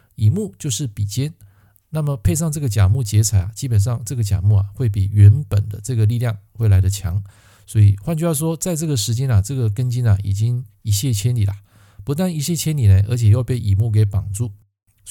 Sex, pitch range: male, 100-135 Hz